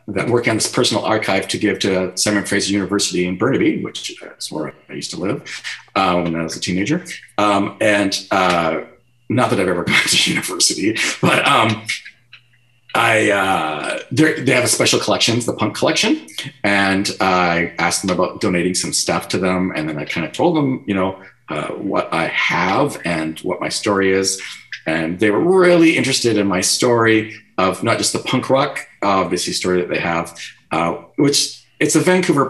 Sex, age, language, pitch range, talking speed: male, 40-59, English, 95-115 Hz, 185 wpm